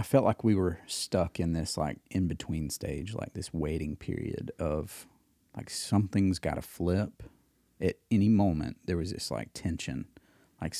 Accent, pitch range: American, 85-100 Hz